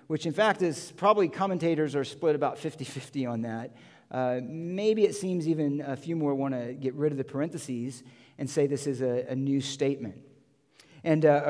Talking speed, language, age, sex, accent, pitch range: 195 wpm, English, 50-69, male, American, 135-195 Hz